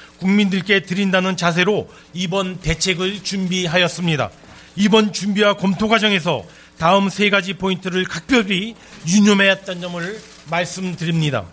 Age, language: 40-59, Korean